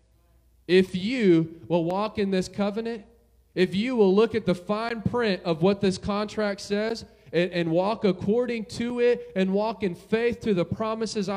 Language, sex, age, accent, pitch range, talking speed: English, male, 30-49, American, 180-230 Hz, 175 wpm